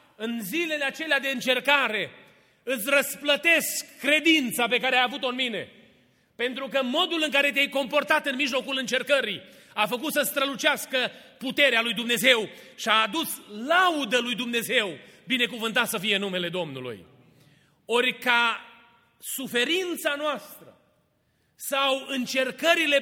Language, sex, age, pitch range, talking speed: Romanian, male, 30-49, 220-290 Hz, 125 wpm